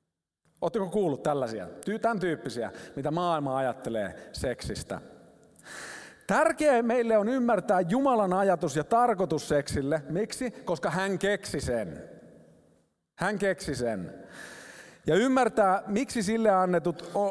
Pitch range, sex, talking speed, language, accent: 185-240 Hz, male, 110 wpm, Finnish, native